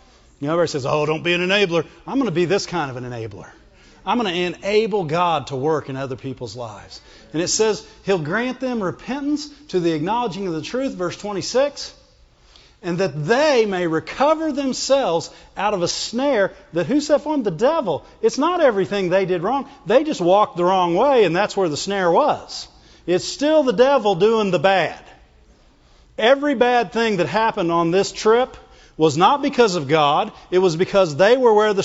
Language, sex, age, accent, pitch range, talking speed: English, male, 40-59, American, 170-240 Hz, 200 wpm